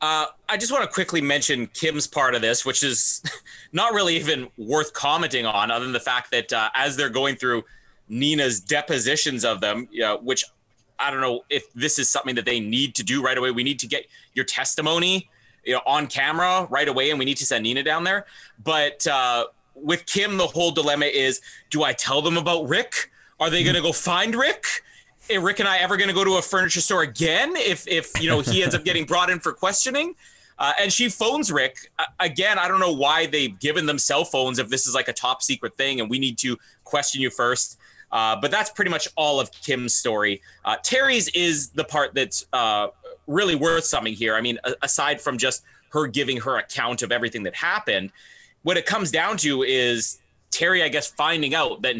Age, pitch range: 30-49, 125-175 Hz